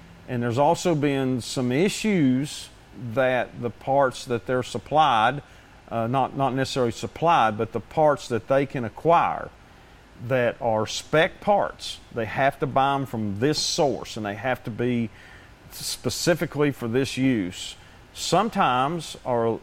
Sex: male